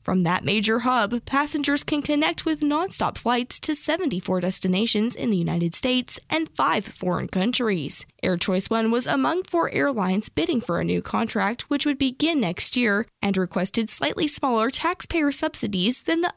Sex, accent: female, American